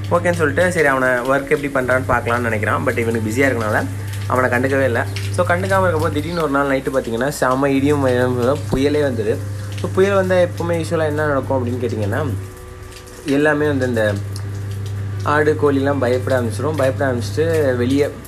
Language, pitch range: Tamil, 100-130 Hz